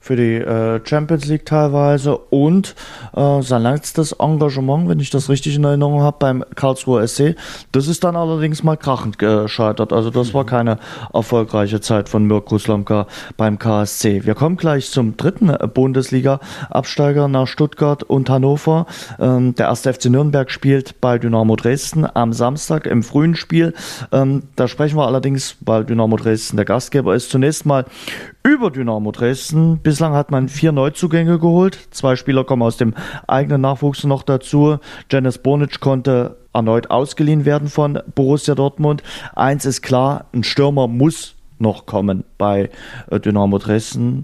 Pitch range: 115-145 Hz